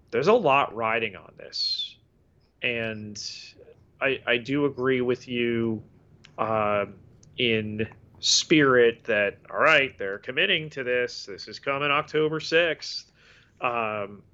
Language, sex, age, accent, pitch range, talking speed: English, male, 30-49, American, 110-145 Hz, 120 wpm